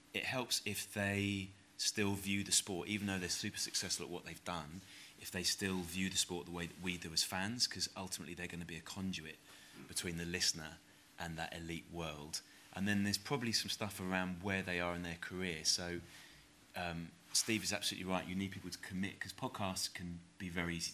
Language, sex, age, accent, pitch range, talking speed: English, male, 30-49, British, 85-100 Hz, 215 wpm